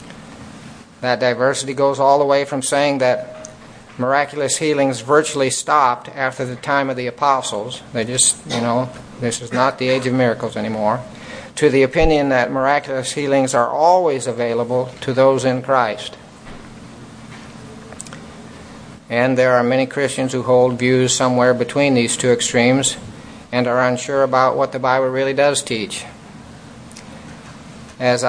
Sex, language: male, English